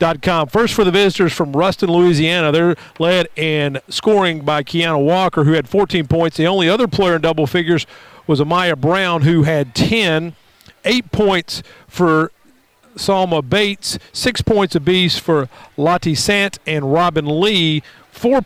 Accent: American